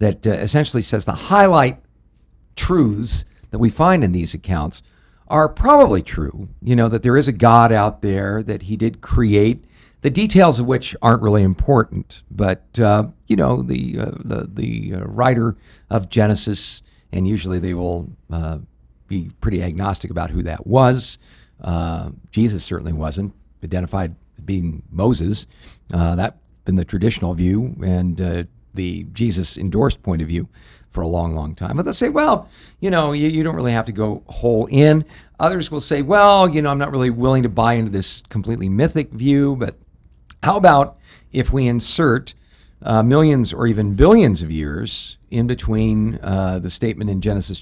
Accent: American